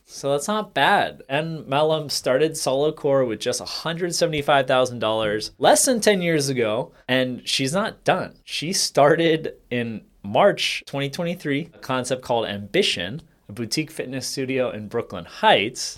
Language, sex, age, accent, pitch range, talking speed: English, male, 30-49, American, 120-145 Hz, 140 wpm